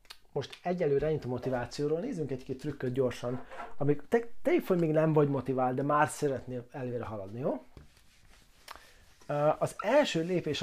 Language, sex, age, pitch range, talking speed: Hungarian, male, 30-49, 125-160 Hz, 130 wpm